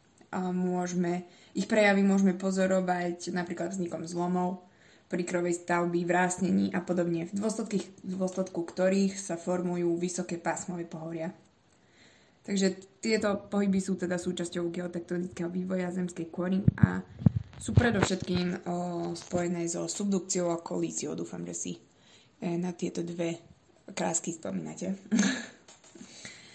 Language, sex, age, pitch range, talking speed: Slovak, female, 20-39, 175-190 Hz, 120 wpm